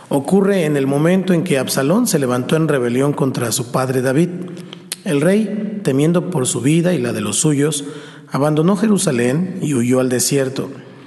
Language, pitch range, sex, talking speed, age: Spanish, 135-165 Hz, male, 175 wpm, 40-59